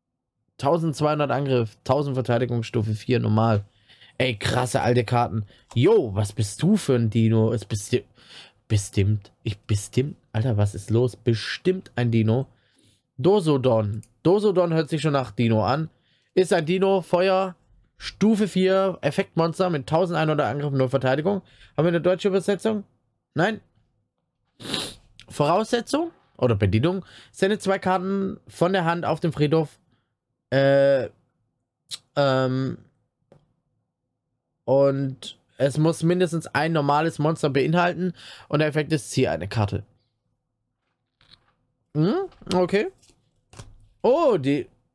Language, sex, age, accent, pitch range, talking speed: German, male, 20-39, German, 115-170 Hz, 120 wpm